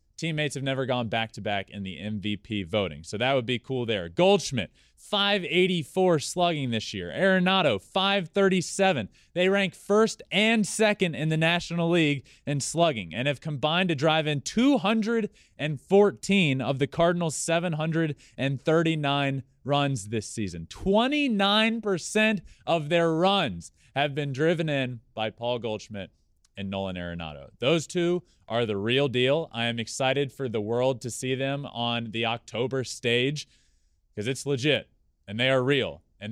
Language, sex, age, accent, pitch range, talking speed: English, male, 20-39, American, 105-170 Hz, 145 wpm